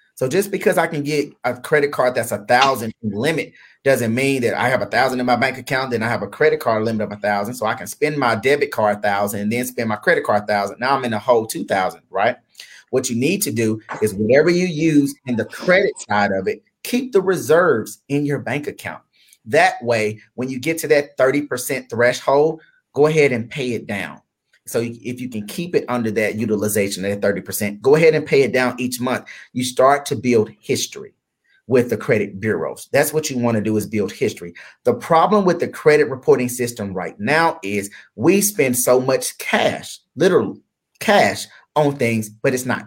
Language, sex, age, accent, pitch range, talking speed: English, male, 30-49, American, 110-140 Hz, 215 wpm